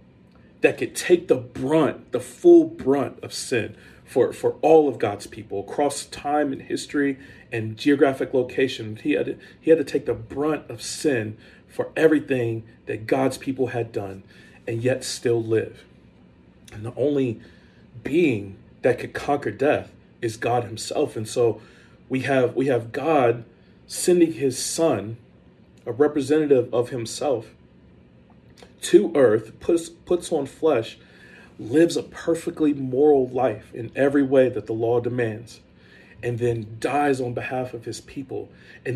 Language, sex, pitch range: English, male, 110-145 Hz